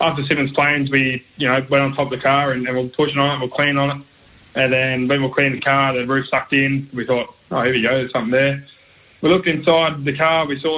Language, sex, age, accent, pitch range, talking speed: English, male, 20-39, Australian, 130-145 Hz, 280 wpm